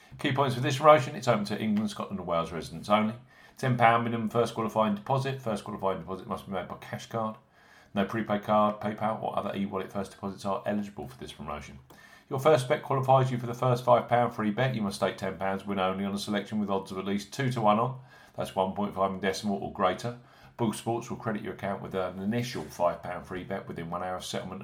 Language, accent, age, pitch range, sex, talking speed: English, British, 40-59, 95-125 Hz, male, 230 wpm